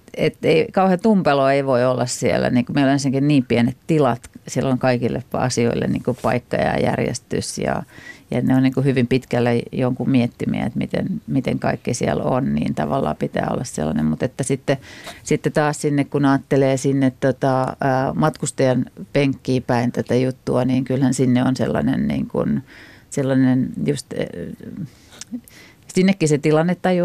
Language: Finnish